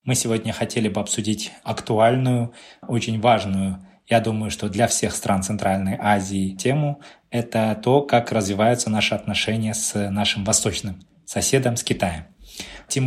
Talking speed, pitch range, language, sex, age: 140 wpm, 110-140 Hz, Russian, male, 20-39